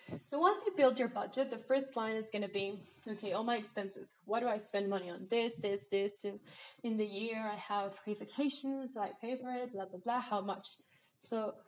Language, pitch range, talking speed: English, 205-255 Hz, 225 wpm